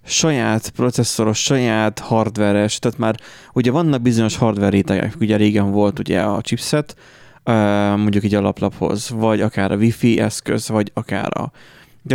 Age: 30-49